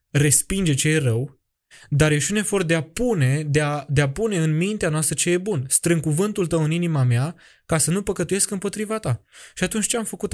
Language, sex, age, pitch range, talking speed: Romanian, male, 20-39, 130-165 Hz, 225 wpm